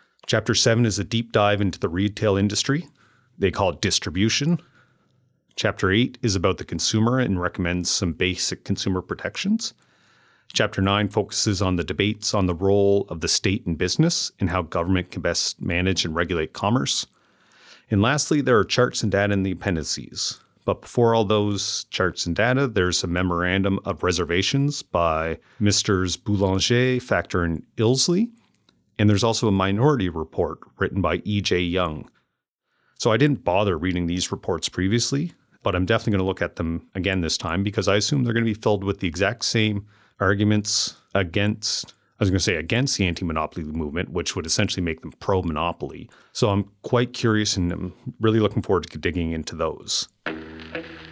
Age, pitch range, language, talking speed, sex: 30-49, 90-115 Hz, English, 170 wpm, male